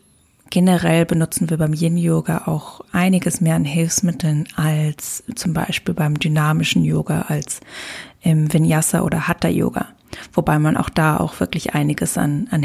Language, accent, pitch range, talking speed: German, German, 155-185 Hz, 140 wpm